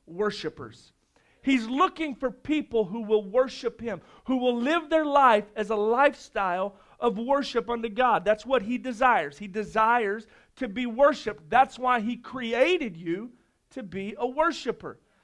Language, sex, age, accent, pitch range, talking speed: English, male, 40-59, American, 230-295 Hz, 155 wpm